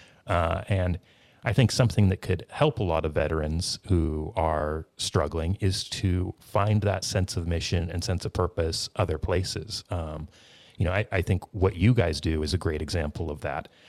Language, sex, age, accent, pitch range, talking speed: English, male, 30-49, American, 85-105 Hz, 190 wpm